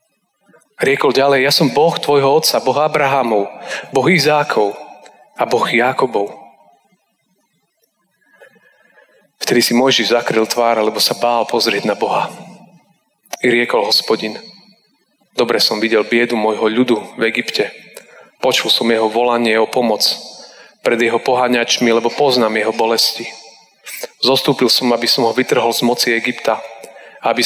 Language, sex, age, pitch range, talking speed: Slovak, male, 30-49, 110-125 Hz, 130 wpm